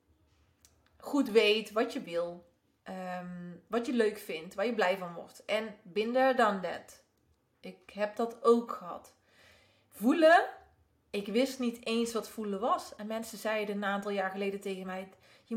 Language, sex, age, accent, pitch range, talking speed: Dutch, female, 30-49, Dutch, 195-255 Hz, 160 wpm